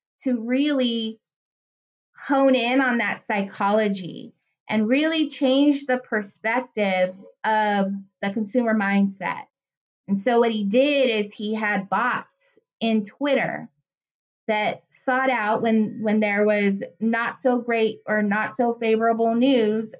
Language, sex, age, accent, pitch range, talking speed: English, female, 20-39, American, 205-255 Hz, 125 wpm